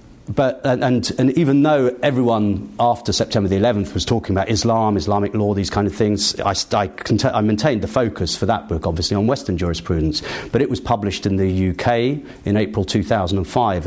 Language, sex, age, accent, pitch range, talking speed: English, male, 40-59, British, 95-115 Hz, 185 wpm